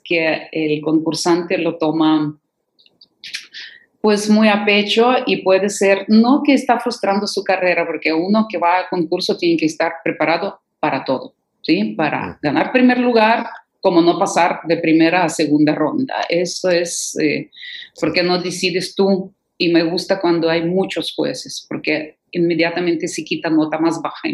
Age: 40-59